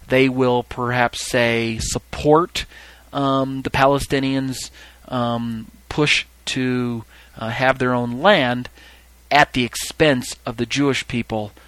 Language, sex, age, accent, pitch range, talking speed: English, male, 30-49, American, 115-135 Hz, 120 wpm